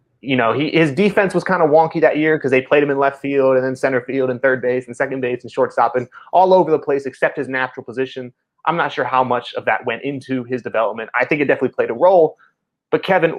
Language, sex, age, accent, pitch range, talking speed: English, male, 30-49, American, 125-155 Hz, 260 wpm